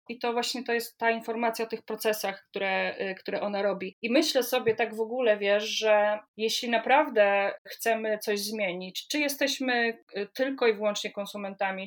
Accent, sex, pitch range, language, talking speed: native, female, 215-240 Hz, Polish, 165 wpm